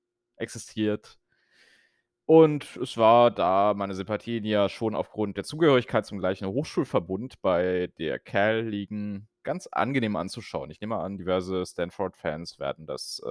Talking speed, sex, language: 135 wpm, male, German